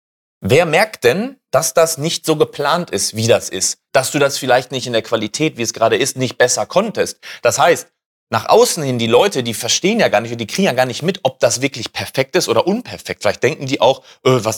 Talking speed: 240 wpm